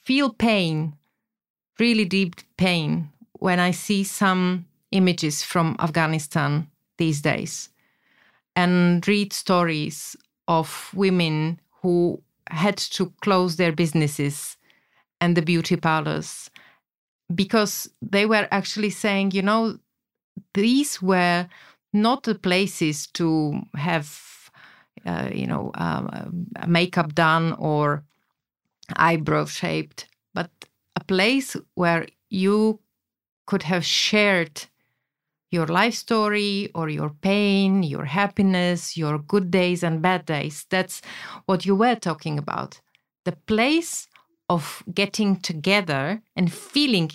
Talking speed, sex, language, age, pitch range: 110 wpm, female, Slovak, 30-49, 165-205 Hz